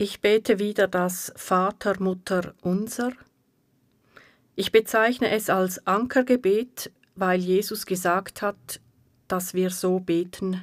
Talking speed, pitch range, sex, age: 100 wpm, 170-215 Hz, female, 40-59